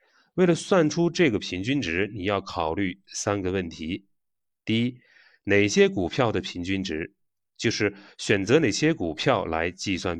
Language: Chinese